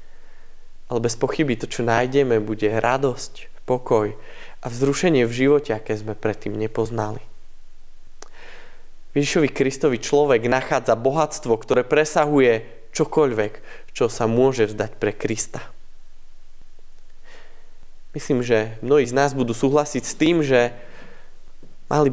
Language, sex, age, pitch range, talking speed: Slovak, male, 20-39, 115-150 Hz, 115 wpm